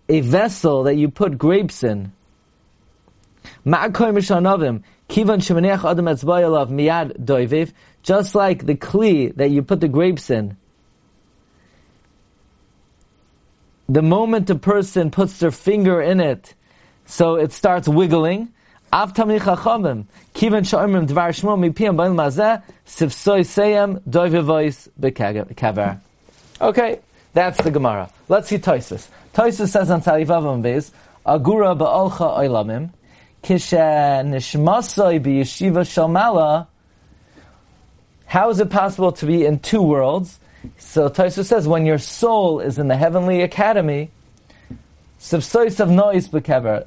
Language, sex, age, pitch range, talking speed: English, male, 30-49, 140-190 Hz, 90 wpm